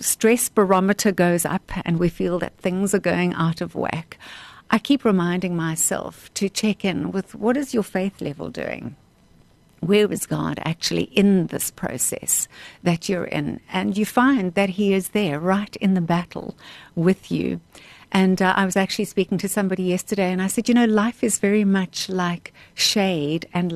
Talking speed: 180 wpm